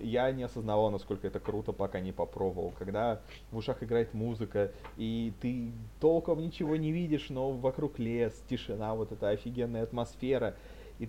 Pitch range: 105-130 Hz